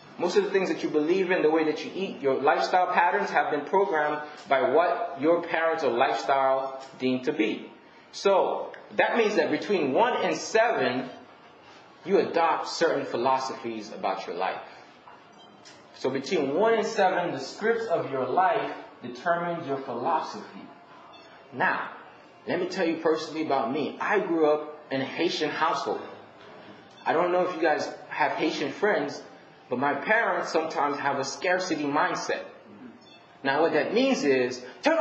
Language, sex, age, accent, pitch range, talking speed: English, male, 20-39, American, 150-230 Hz, 160 wpm